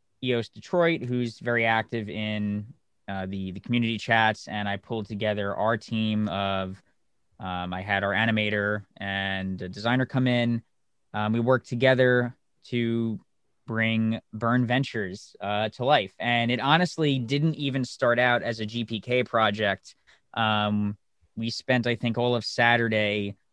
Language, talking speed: English, 150 wpm